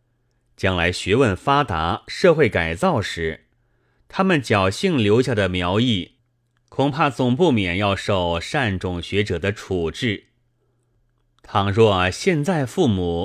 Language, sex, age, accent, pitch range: Chinese, male, 30-49, native, 95-125 Hz